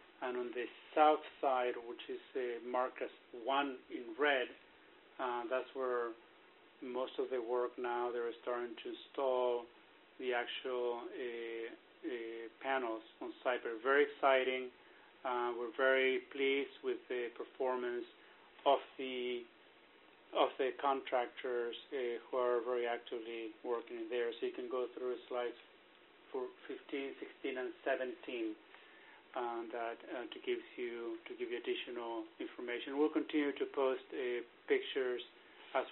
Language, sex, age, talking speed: English, male, 40-59, 135 wpm